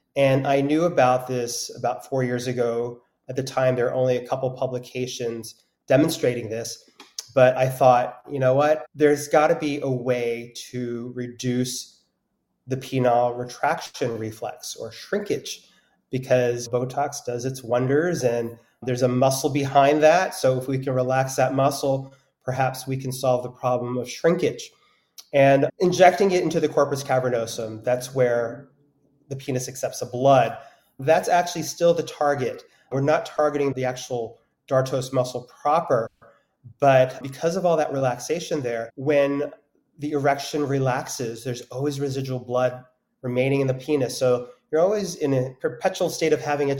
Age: 30-49